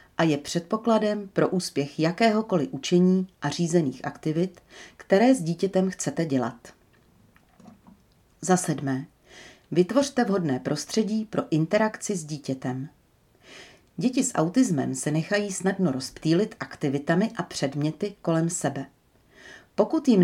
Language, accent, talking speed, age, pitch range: Czech, native, 115 wpm, 40-59, 145-205 Hz